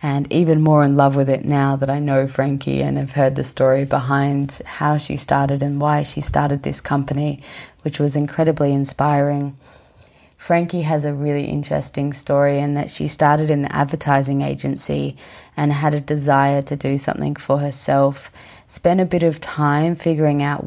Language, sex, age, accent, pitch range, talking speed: English, female, 20-39, Australian, 135-150 Hz, 175 wpm